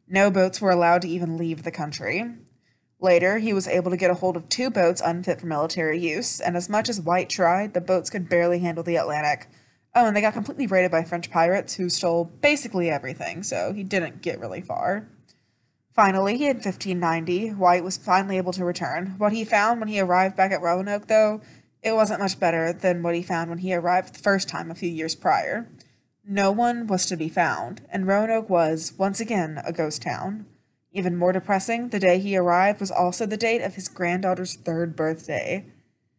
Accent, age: American, 20-39